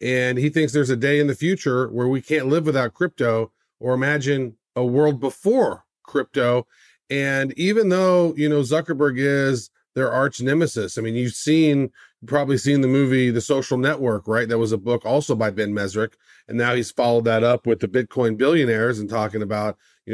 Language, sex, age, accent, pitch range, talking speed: English, male, 40-59, American, 115-145 Hz, 195 wpm